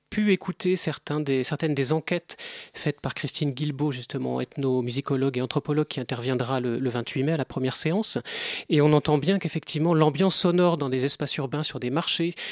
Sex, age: male, 30-49